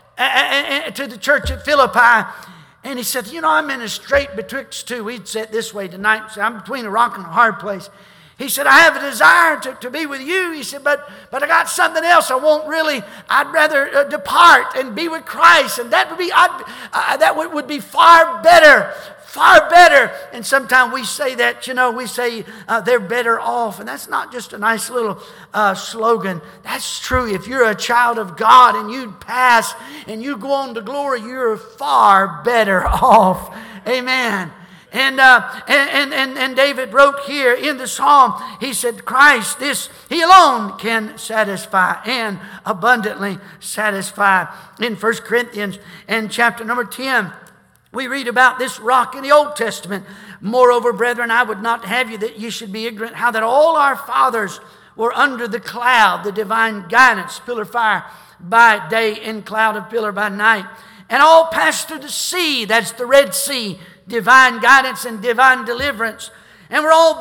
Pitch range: 215-275 Hz